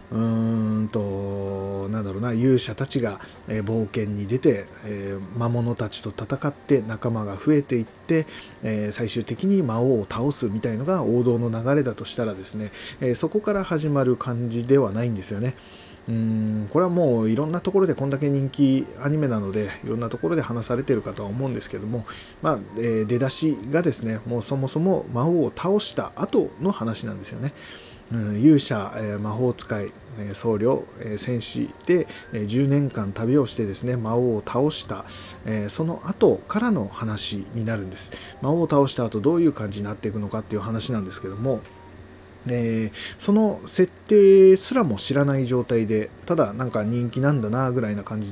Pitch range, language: 105-135 Hz, Japanese